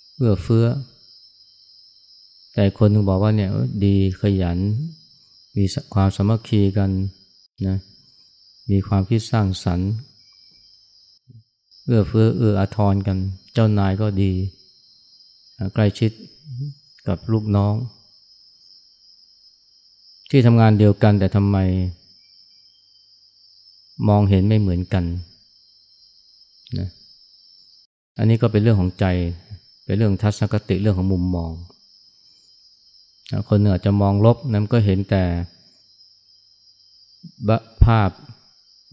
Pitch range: 95-110 Hz